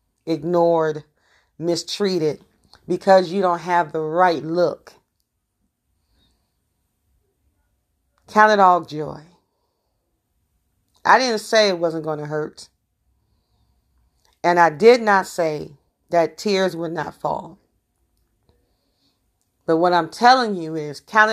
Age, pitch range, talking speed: 40-59, 165-210 Hz, 105 wpm